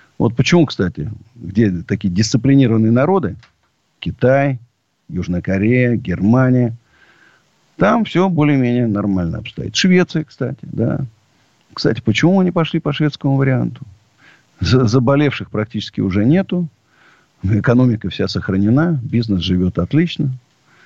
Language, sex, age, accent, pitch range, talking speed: Russian, male, 50-69, native, 100-140 Hz, 105 wpm